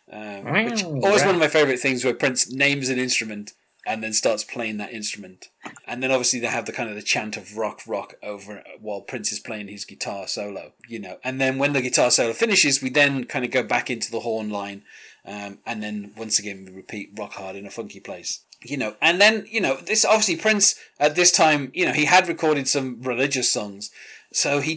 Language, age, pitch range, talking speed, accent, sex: English, 30-49, 110-140 Hz, 230 wpm, British, male